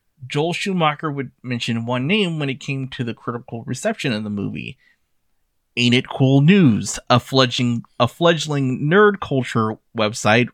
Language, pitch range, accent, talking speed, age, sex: English, 125-165 Hz, American, 150 wpm, 30-49, male